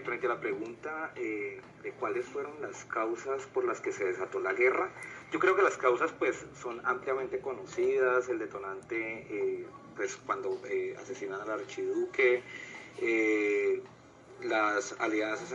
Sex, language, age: male, Spanish, 30-49